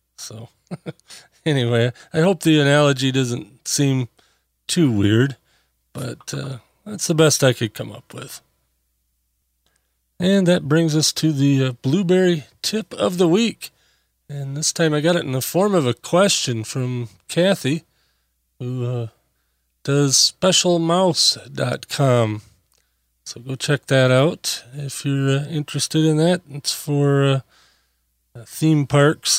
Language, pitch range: English, 120-160 Hz